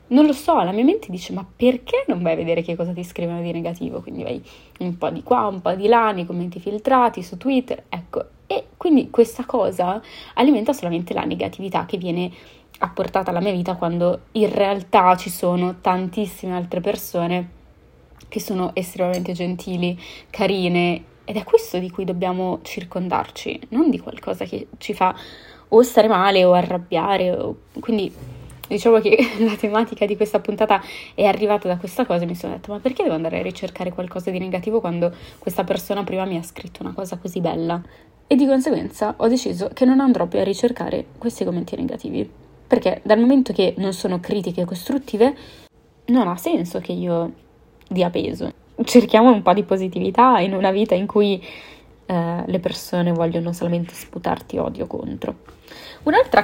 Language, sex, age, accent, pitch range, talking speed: Italian, female, 20-39, native, 180-220 Hz, 175 wpm